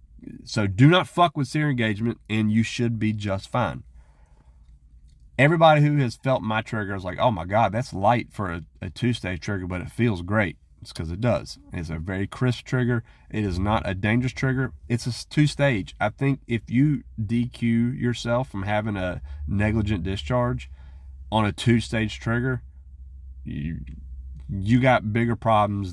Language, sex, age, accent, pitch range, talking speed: English, male, 30-49, American, 70-115 Hz, 170 wpm